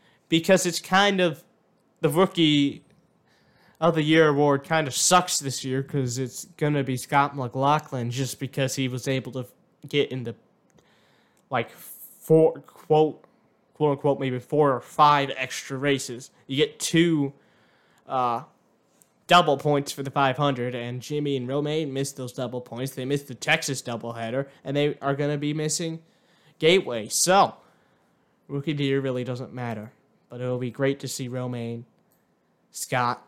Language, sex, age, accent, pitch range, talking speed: English, male, 20-39, American, 130-160 Hz, 160 wpm